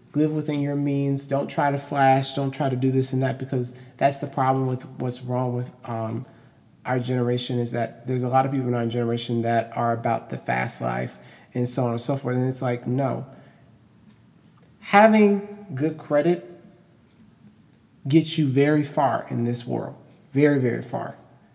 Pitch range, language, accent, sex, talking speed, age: 120-145 Hz, English, American, male, 180 wpm, 30-49